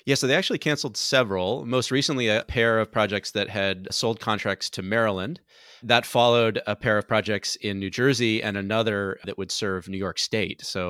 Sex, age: male, 30-49